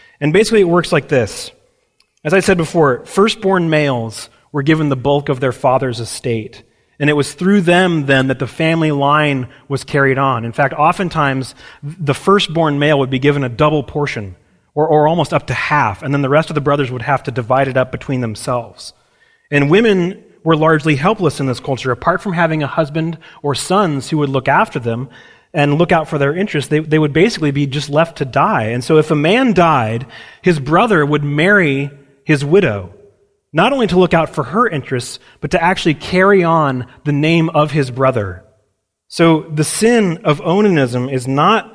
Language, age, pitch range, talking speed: English, 30-49, 135-170 Hz, 200 wpm